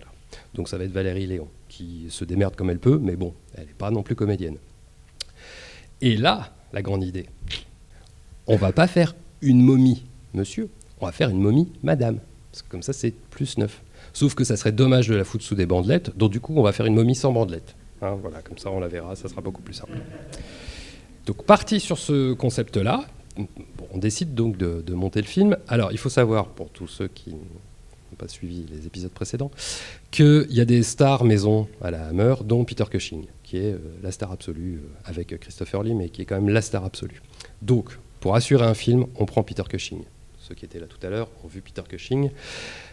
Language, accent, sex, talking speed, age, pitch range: English, French, male, 215 wpm, 40-59, 95-120 Hz